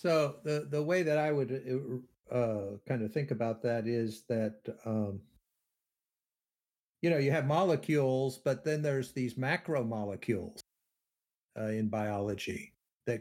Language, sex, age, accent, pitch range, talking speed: English, male, 50-69, American, 115-145 Hz, 130 wpm